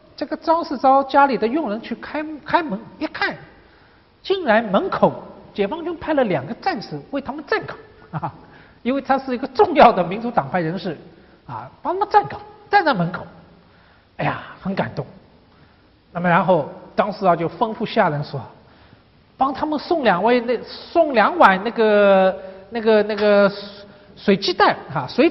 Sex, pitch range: male, 190-300 Hz